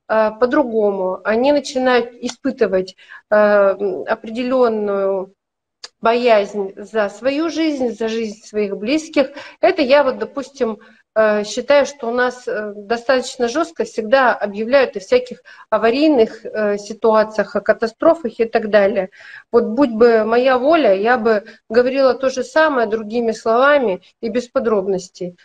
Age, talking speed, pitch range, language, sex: 40-59, 120 wpm, 215-275 Hz, Russian, female